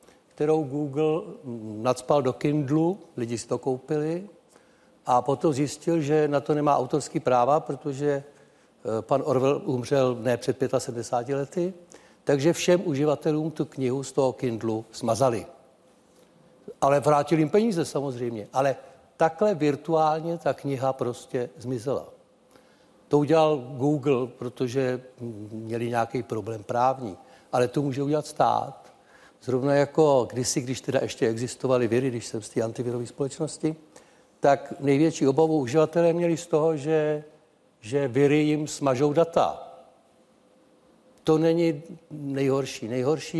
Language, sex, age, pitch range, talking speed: Czech, male, 60-79, 125-150 Hz, 125 wpm